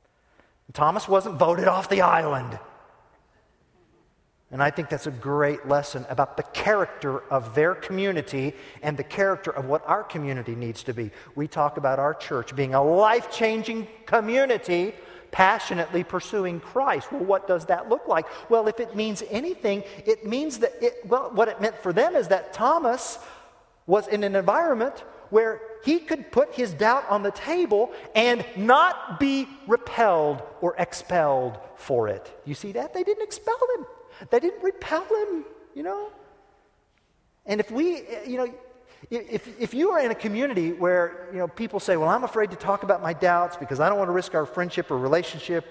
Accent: American